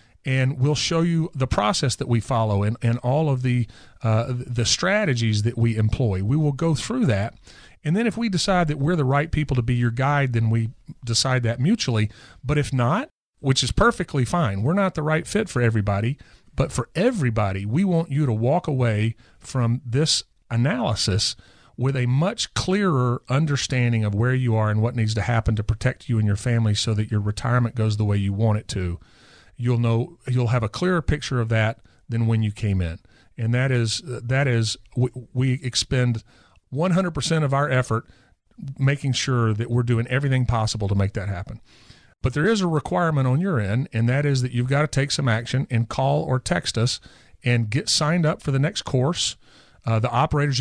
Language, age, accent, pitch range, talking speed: English, 40-59, American, 115-145 Hz, 205 wpm